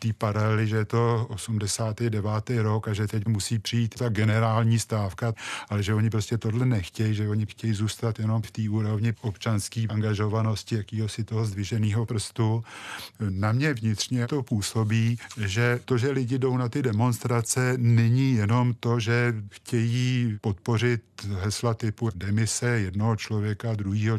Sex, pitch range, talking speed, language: male, 110-120 Hz, 150 wpm, Czech